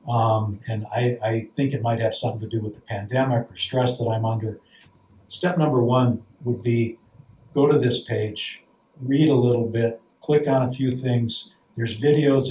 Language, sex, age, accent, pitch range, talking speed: English, male, 60-79, American, 110-130 Hz, 185 wpm